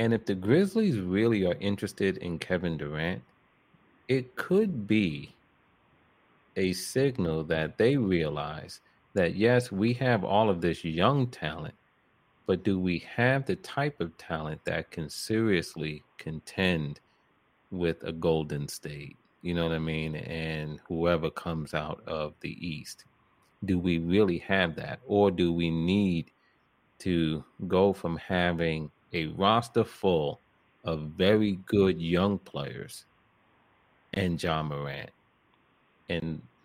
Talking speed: 130 wpm